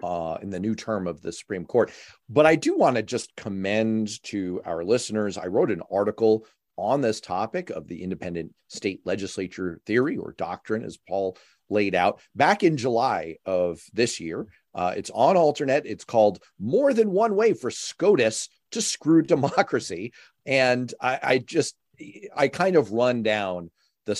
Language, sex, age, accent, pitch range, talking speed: English, male, 40-59, American, 95-130 Hz, 170 wpm